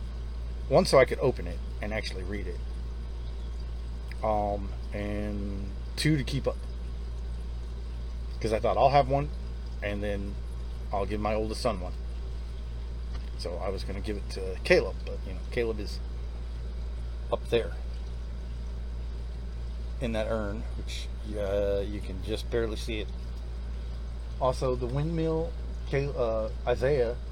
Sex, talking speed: male, 135 wpm